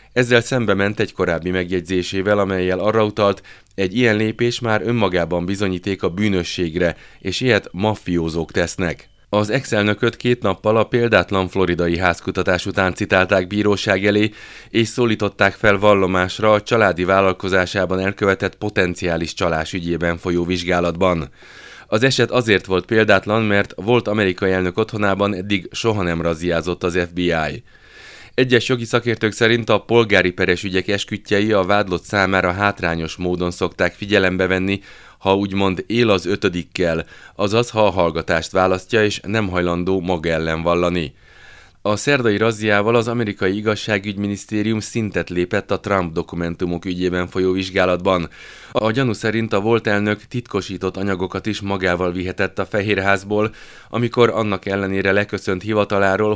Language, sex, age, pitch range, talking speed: Hungarian, male, 30-49, 90-105 Hz, 135 wpm